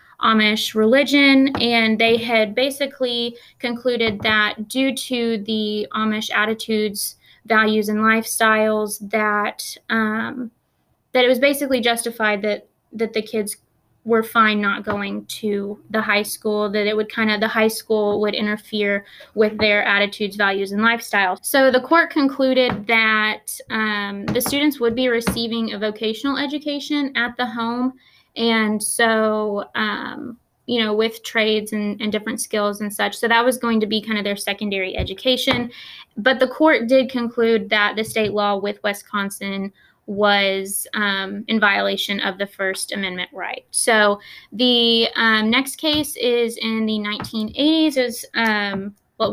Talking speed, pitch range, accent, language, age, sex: 150 wpm, 210-245 Hz, American, English, 20-39, female